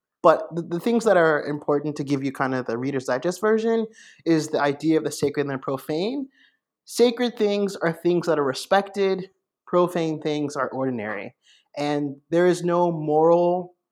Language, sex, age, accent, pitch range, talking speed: English, male, 30-49, American, 135-175 Hz, 175 wpm